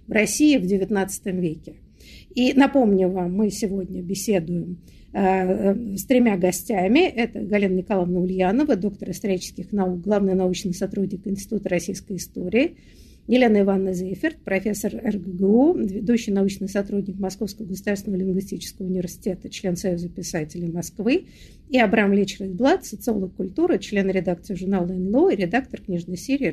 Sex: female